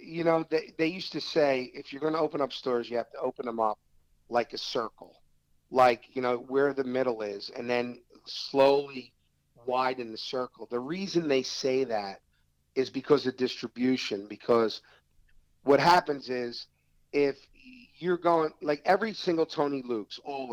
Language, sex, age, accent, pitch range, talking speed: English, male, 50-69, American, 120-155 Hz, 170 wpm